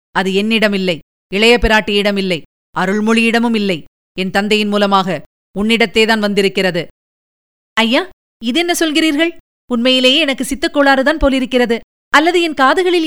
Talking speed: 100 wpm